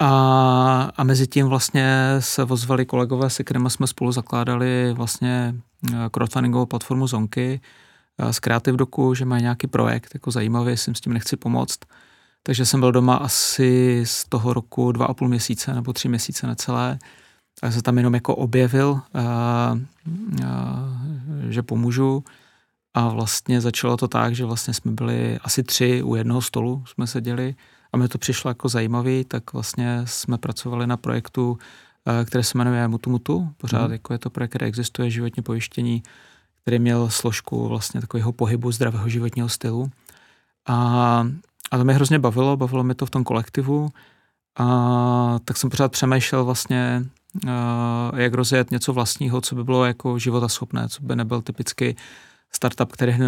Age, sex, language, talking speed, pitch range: 30-49, male, Czech, 160 wpm, 120-130 Hz